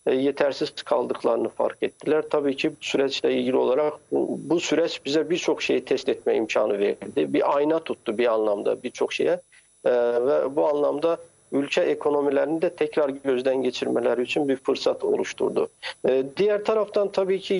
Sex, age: male, 50-69